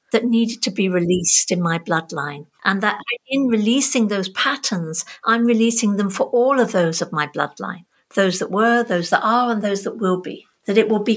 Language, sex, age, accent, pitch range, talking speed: English, female, 50-69, British, 180-230 Hz, 210 wpm